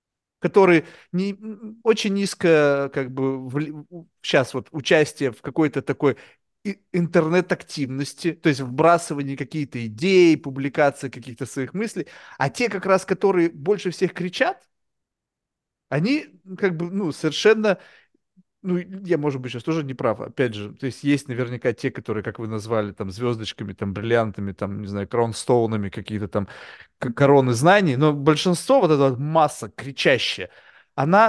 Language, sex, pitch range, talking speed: Russian, male, 135-180 Hz, 135 wpm